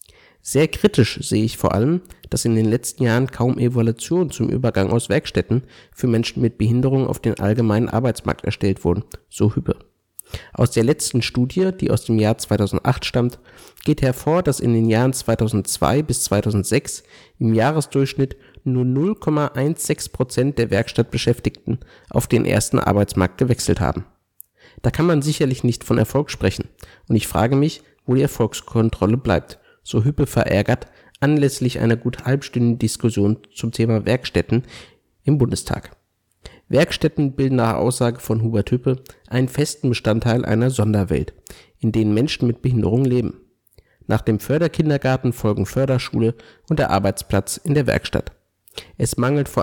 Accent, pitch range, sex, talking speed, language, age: German, 110-135 Hz, male, 145 wpm, German, 50-69